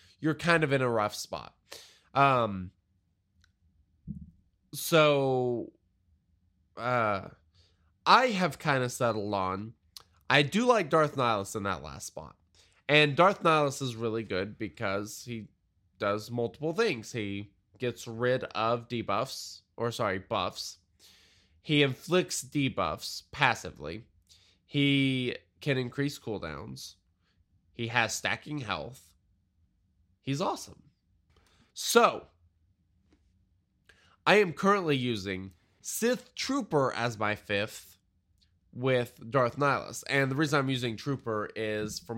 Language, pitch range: English, 95-140 Hz